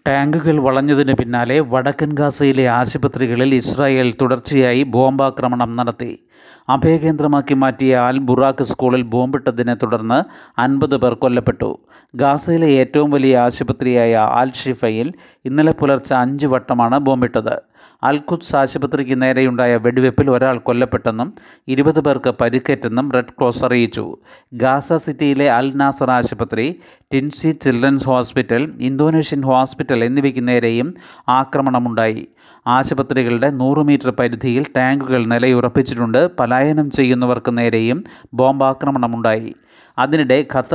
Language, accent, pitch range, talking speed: Malayalam, native, 125-140 Hz, 105 wpm